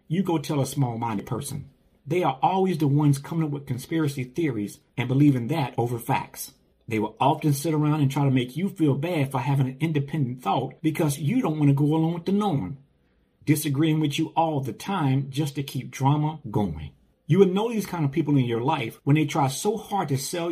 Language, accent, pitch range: English, American, 135-160 Hz